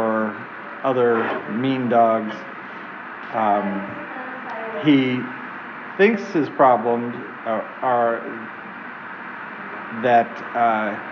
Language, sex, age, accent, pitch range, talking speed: English, male, 40-59, American, 115-140 Hz, 60 wpm